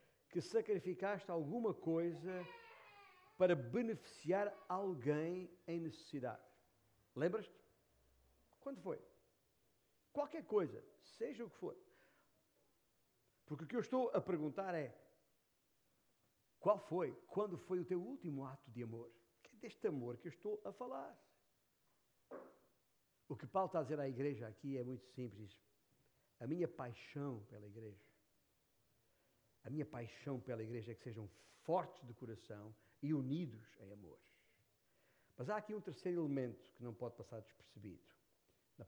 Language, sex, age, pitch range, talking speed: Portuguese, male, 50-69, 115-185 Hz, 135 wpm